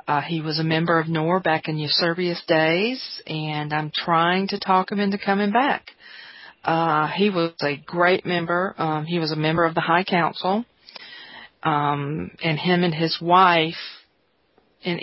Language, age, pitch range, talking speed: English, 40-59, 165-205 Hz, 170 wpm